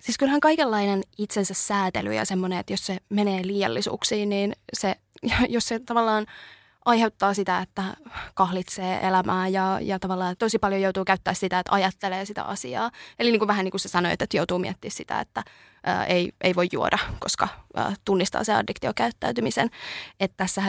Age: 20-39